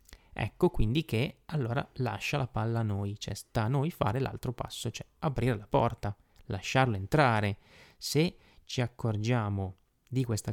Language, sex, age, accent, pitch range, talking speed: Italian, male, 20-39, native, 105-130 Hz, 155 wpm